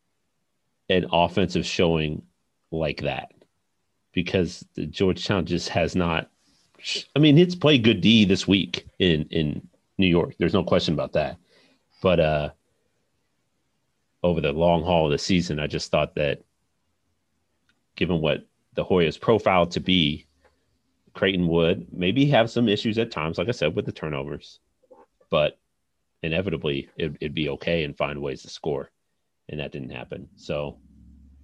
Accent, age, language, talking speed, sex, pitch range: American, 40-59, English, 145 wpm, male, 80-95 Hz